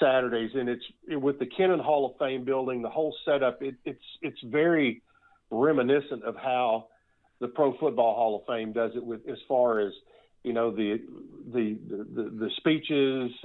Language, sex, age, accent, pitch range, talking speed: English, male, 50-69, American, 125-140 Hz, 175 wpm